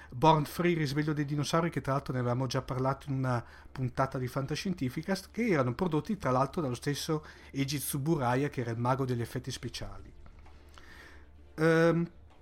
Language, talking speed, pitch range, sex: Italian, 160 wpm, 130-170 Hz, male